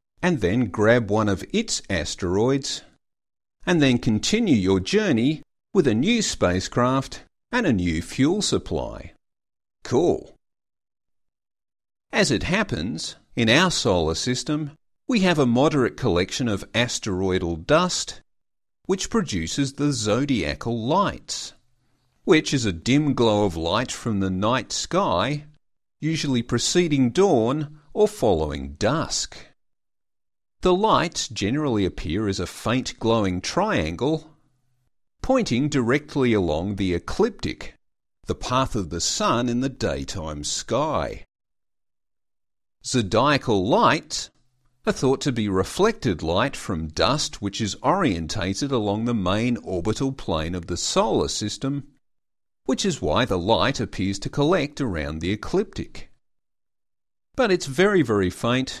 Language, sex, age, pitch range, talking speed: English, male, 50-69, 95-140 Hz, 120 wpm